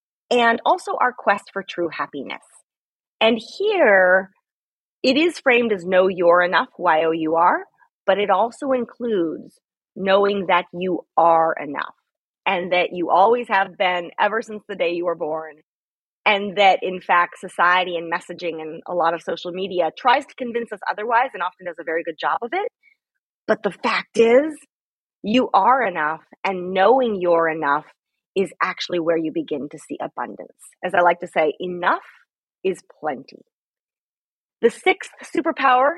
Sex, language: female, English